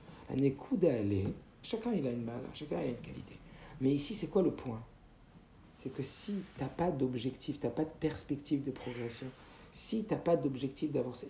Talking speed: 205 wpm